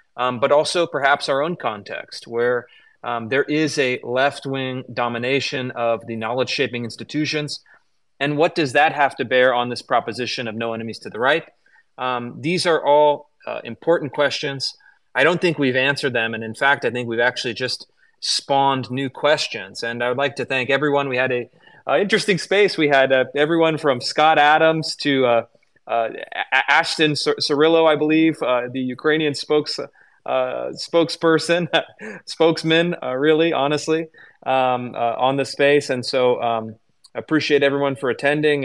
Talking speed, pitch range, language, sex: 165 wpm, 125-150 Hz, English, male